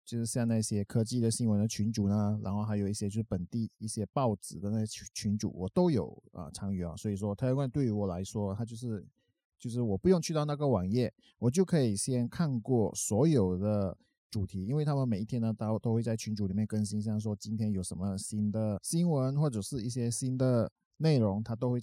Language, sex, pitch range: Chinese, male, 100-130 Hz